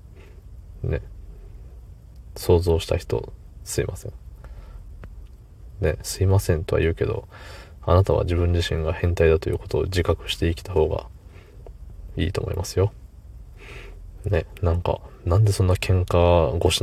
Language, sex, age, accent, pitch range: Japanese, male, 20-39, native, 80-95 Hz